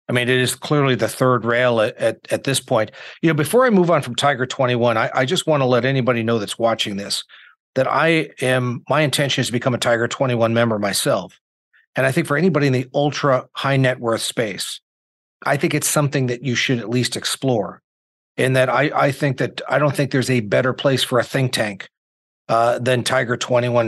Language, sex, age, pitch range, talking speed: English, male, 40-59, 120-135 Hz, 225 wpm